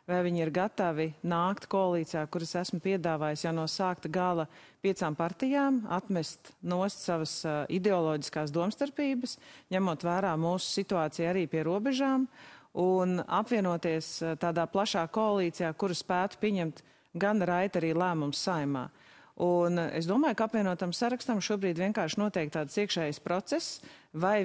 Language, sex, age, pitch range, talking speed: English, female, 40-59, 165-210 Hz, 130 wpm